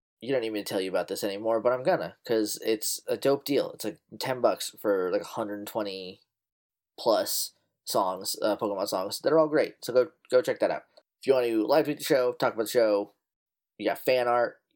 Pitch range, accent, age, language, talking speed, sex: 105-170 Hz, American, 20-39, English, 230 wpm, male